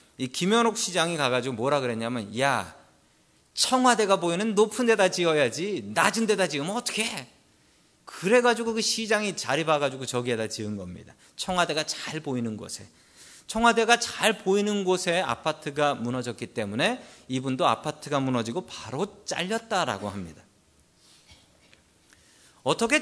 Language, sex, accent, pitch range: Korean, male, native, 125-195 Hz